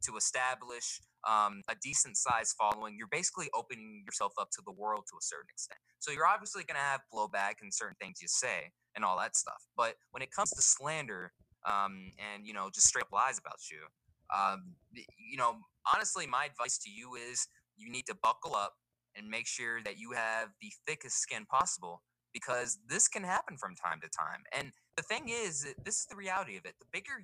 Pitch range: 105-165 Hz